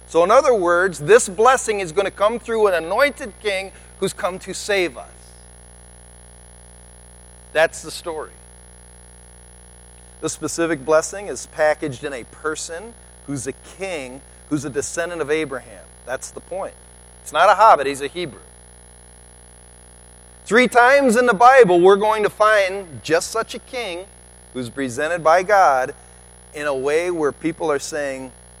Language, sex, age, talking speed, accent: English, male, 40-59, 150 wpm, American